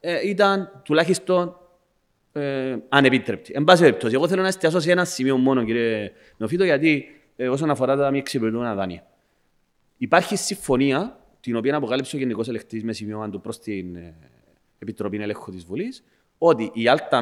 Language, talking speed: Greek, 140 wpm